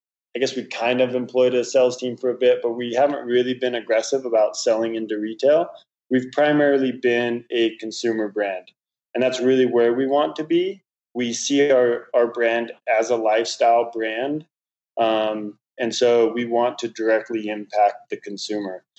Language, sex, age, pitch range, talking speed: English, male, 20-39, 110-125 Hz, 175 wpm